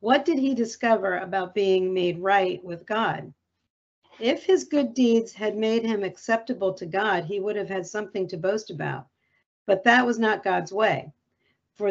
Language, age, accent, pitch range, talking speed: English, 50-69, American, 185-225 Hz, 175 wpm